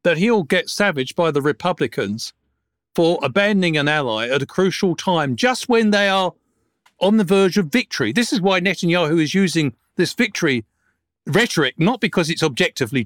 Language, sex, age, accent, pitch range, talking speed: English, male, 50-69, British, 145-185 Hz, 170 wpm